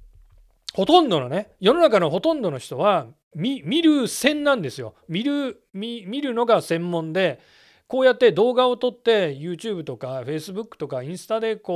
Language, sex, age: Japanese, male, 40-59